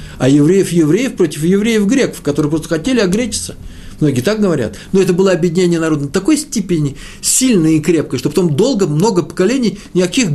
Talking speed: 160 wpm